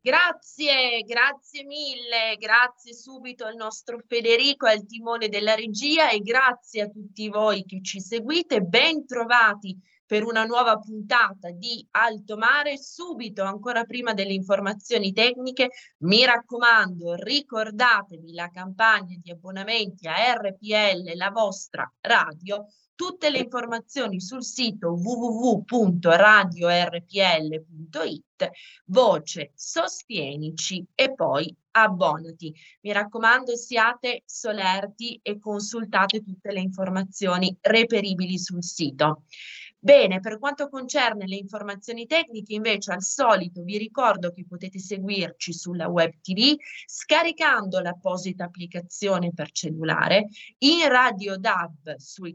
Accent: native